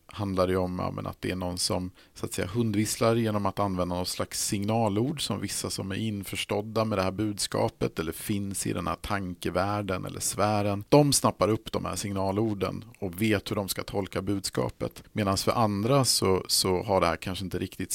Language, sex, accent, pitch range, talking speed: Swedish, male, Norwegian, 95-115 Hz, 195 wpm